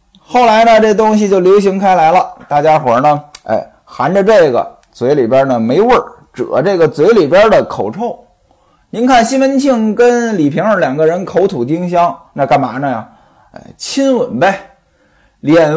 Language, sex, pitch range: Chinese, male, 160-255 Hz